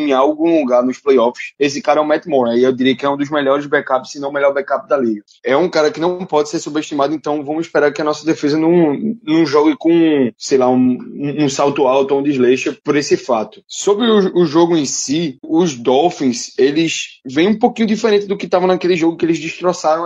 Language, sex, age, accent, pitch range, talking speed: Portuguese, male, 20-39, Brazilian, 130-165 Hz, 240 wpm